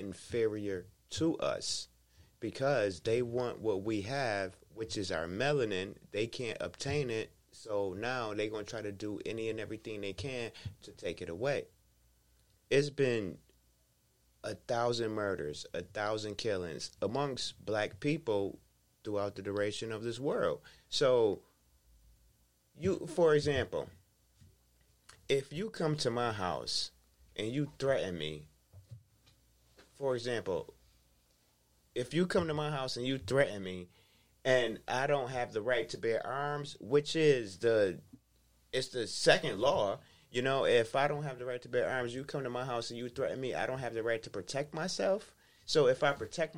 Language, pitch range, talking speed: English, 95-135 Hz, 160 wpm